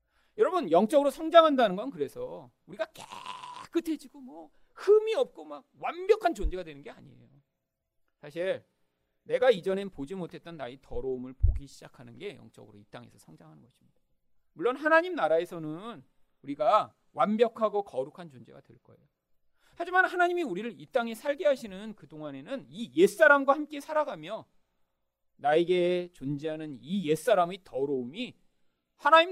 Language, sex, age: Korean, male, 40-59